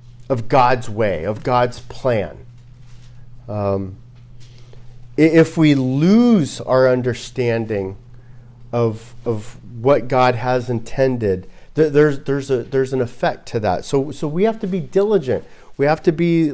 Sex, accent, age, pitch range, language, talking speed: male, American, 40-59, 120-155 Hz, English, 140 wpm